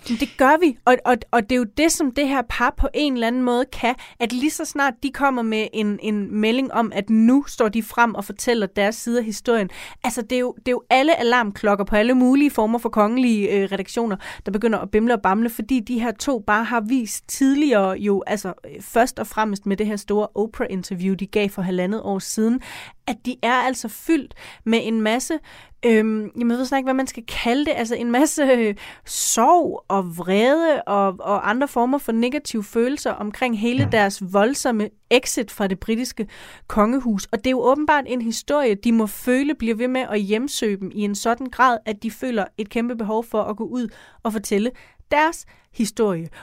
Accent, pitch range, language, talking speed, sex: native, 210-255 Hz, Danish, 205 wpm, female